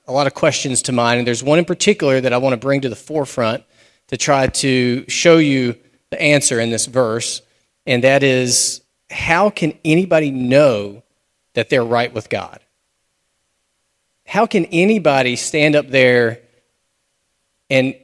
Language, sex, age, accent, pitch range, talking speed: English, male, 40-59, American, 115-145 Hz, 160 wpm